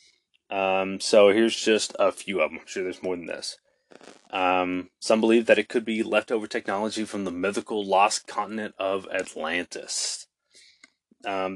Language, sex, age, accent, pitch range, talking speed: English, male, 20-39, American, 95-110 Hz, 160 wpm